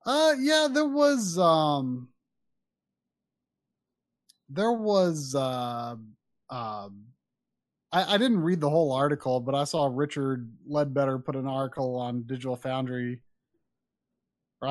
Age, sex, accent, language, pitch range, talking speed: 30-49, male, American, English, 135-220 Hz, 115 wpm